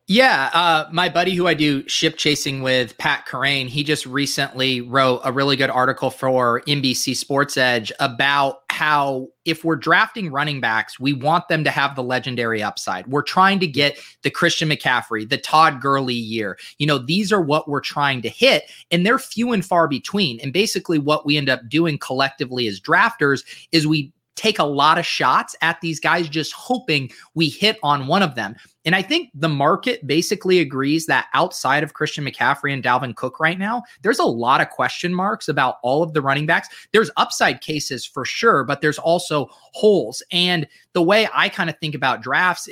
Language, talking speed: English, 195 wpm